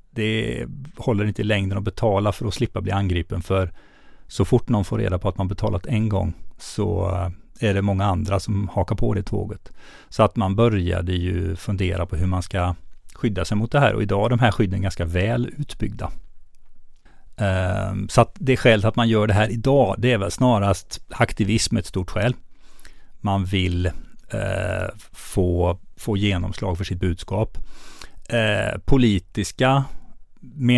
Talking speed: 165 wpm